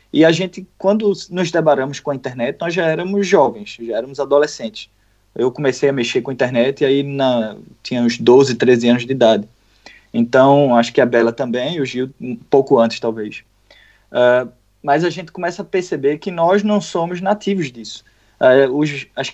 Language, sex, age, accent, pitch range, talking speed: Portuguese, male, 20-39, Brazilian, 130-175 Hz, 190 wpm